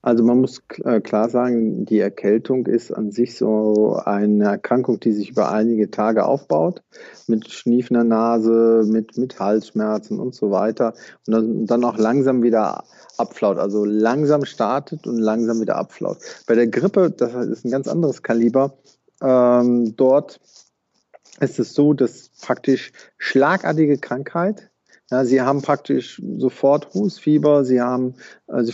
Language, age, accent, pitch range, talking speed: German, 40-59, German, 115-135 Hz, 145 wpm